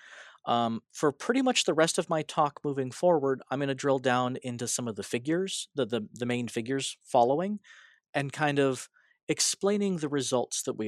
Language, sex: English, male